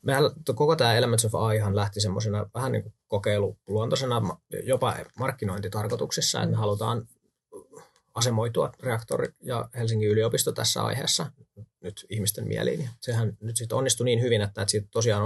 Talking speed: 130 wpm